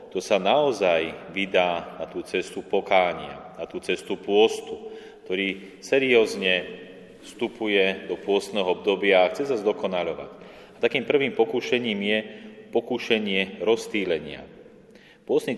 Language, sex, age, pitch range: Slovak, male, 30-49, 95-115 Hz